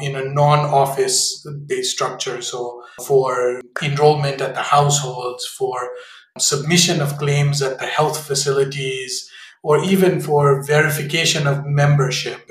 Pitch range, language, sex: 140-180 Hz, English, male